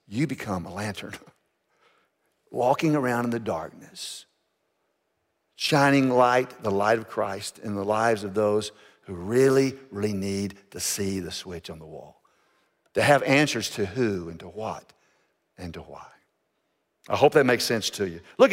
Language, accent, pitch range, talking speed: English, American, 125-185 Hz, 160 wpm